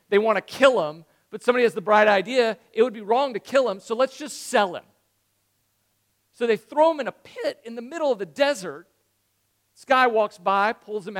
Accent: American